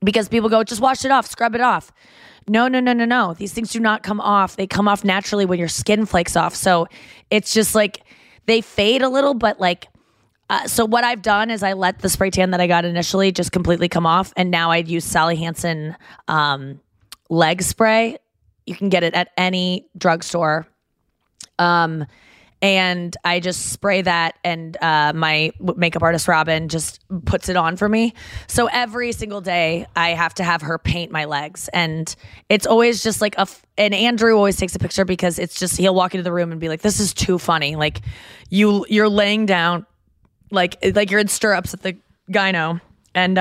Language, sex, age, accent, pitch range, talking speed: English, female, 20-39, American, 170-210 Hz, 205 wpm